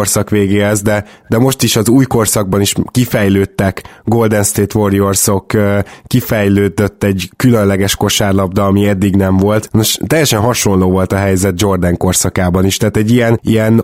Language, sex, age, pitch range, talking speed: Hungarian, male, 20-39, 100-120 Hz, 150 wpm